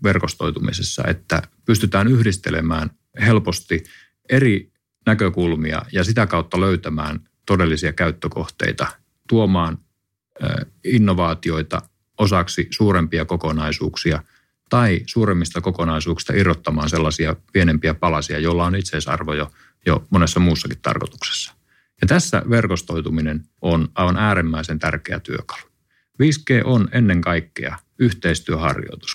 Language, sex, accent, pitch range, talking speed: Finnish, male, native, 80-105 Hz, 95 wpm